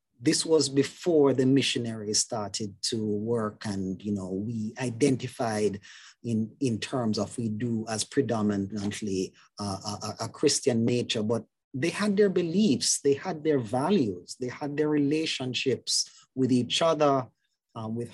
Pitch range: 110-140 Hz